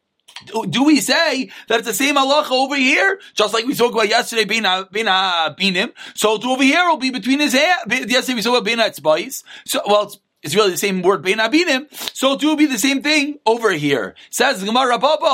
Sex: male